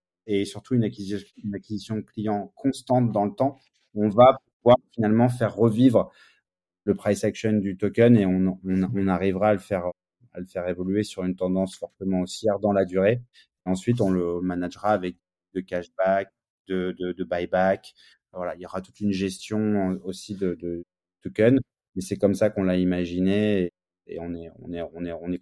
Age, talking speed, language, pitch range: 30-49, 195 wpm, French, 90-110 Hz